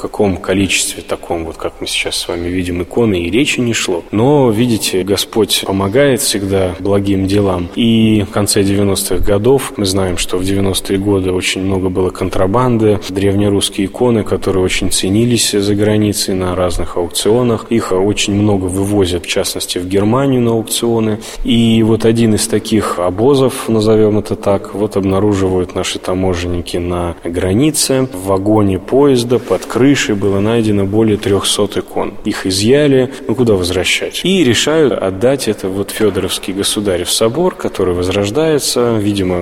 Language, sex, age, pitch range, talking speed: Russian, male, 20-39, 95-110 Hz, 150 wpm